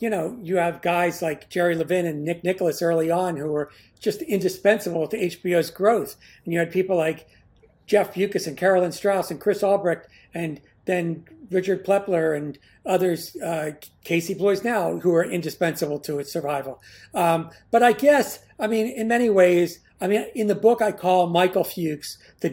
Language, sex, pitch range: English, male, 160-190 Hz